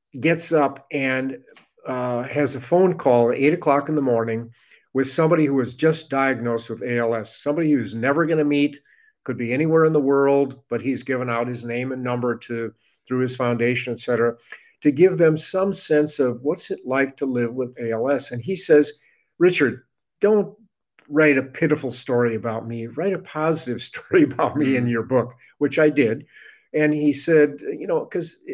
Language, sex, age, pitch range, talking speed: English, male, 50-69, 125-160 Hz, 190 wpm